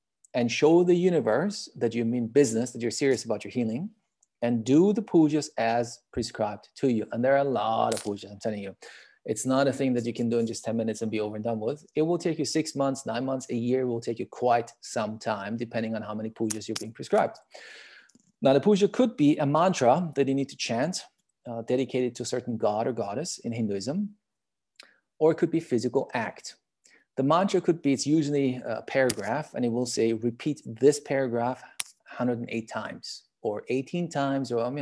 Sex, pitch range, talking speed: male, 115-135 Hz, 215 wpm